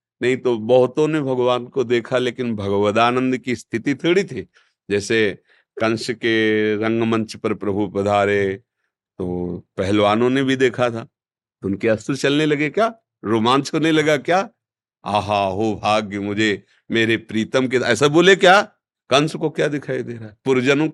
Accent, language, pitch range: native, Hindi, 100-130 Hz